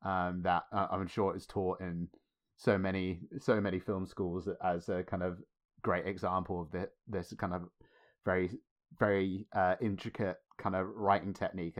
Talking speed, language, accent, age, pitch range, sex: 165 wpm, English, British, 30-49, 90-105 Hz, male